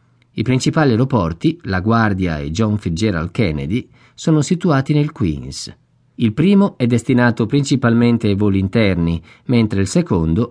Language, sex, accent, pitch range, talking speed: Italian, male, native, 100-135 Hz, 135 wpm